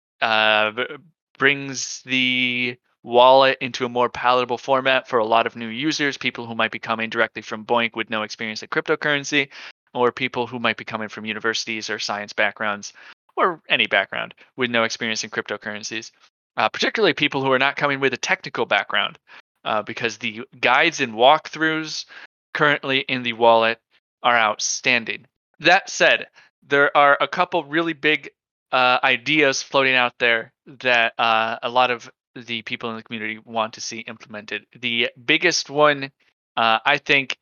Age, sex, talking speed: 20-39, male, 165 wpm